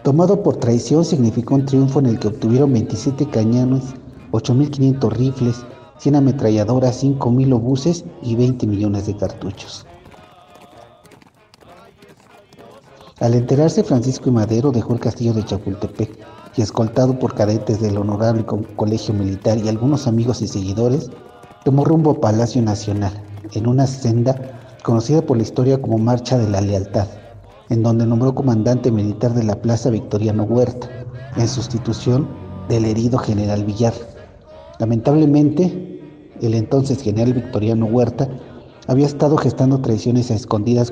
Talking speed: 135 wpm